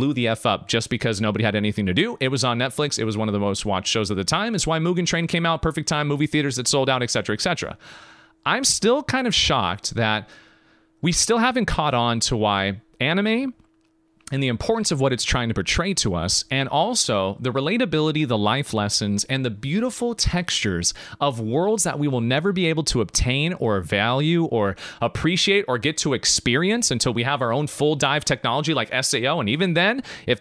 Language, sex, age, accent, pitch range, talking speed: English, male, 30-49, American, 120-205 Hz, 215 wpm